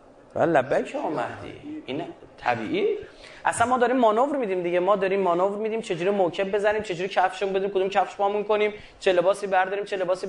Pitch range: 145-200 Hz